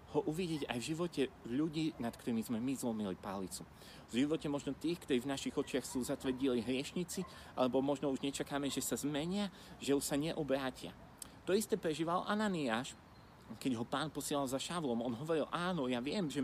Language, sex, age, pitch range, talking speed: Slovak, male, 40-59, 125-165 Hz, 185 wpm